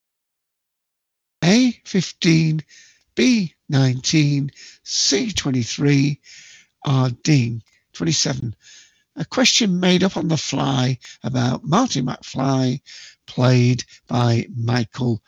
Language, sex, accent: English, male, British